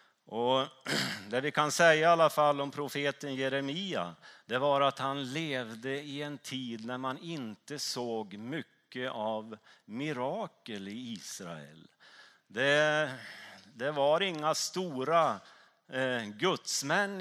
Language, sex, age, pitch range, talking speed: Swedish, male, 30-49, 115-150 Hz, 120 wpm